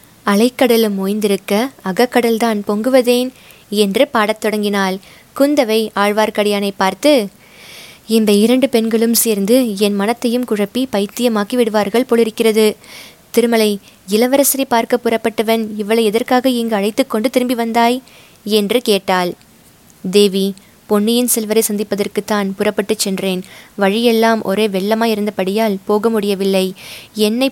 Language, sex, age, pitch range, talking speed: Tamil, female, 20-39, 200-230 Hz, 100 wpm